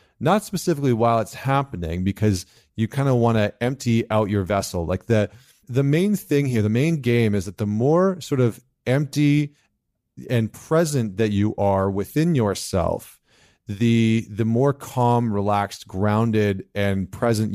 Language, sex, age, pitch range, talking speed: English, male, 40-59, 105-135 Hz, 155 wpm